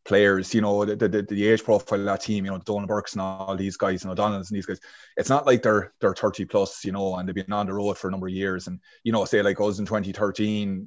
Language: English